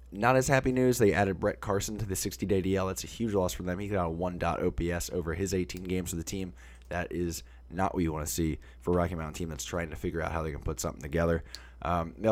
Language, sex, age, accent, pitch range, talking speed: English, male, 20-39, American, 85-110 Hz, 280 wpm